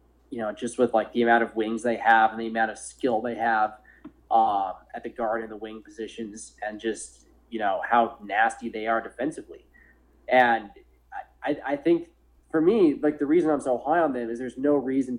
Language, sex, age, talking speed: English, male, 20-39, 210 wpm